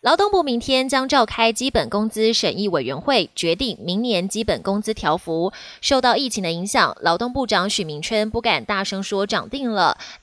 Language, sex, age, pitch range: Chinese, female, 20-39, 195-270 Hz